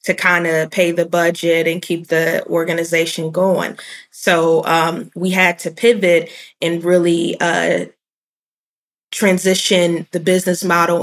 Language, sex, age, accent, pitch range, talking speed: English, female, 20-39, American, 170-185 Hz, 130 wpm